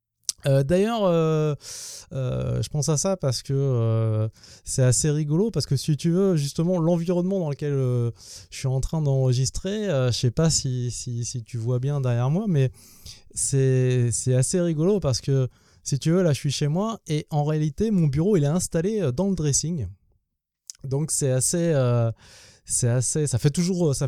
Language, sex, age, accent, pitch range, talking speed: French, male, 20-39, French, 120-160 Hz, 195 wpm